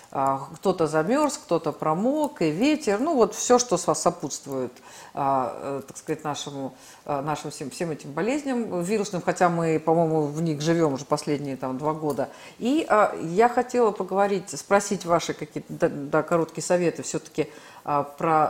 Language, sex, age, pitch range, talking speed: Russian, female, 50-69, 155-200 Hz, 145 wpm